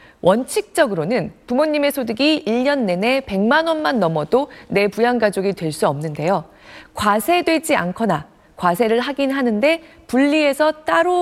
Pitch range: 185-275 Hz